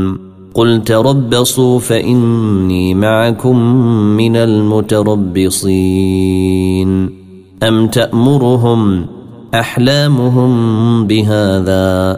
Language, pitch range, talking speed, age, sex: Arabic, 95-115 Hz, 50 wpm, 30-49, male